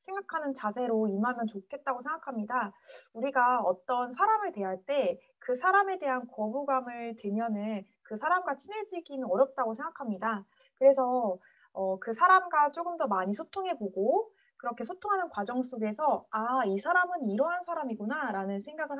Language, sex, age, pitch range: Korean, female, 20-39, 210-315 Hz